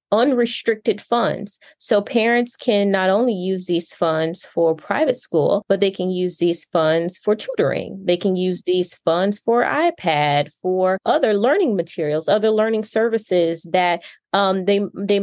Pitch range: 170-215 Hz